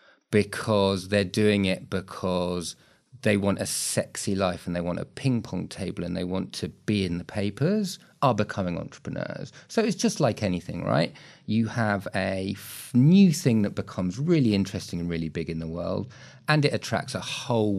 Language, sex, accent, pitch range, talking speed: English, male, British, 95-130 Hz, 180 wpm